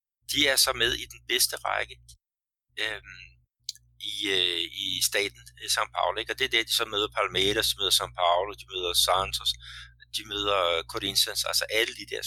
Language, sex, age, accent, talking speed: Danish, male, 60-79, native, 180 wpm